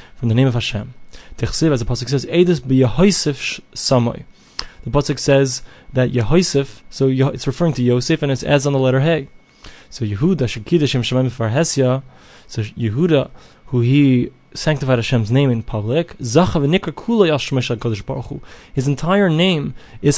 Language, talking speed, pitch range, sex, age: English, 130 wpm, 125-155 Hz, male, 20-39